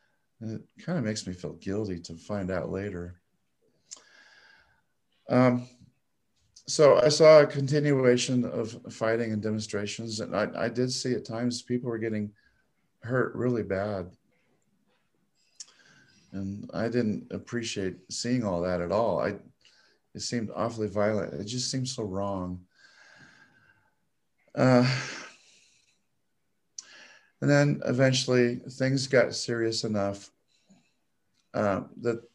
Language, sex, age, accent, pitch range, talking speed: English, male, 40-59, American, 105-125 Hz, 120 wpm